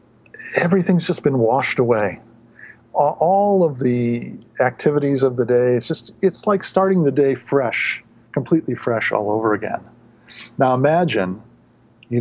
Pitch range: 115-130 Hz